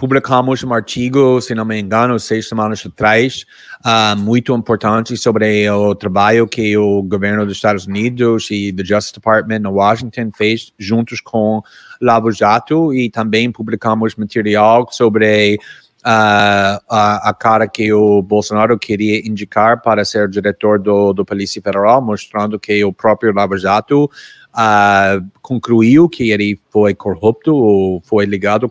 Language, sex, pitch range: Portuguese, male, 105-135 Hz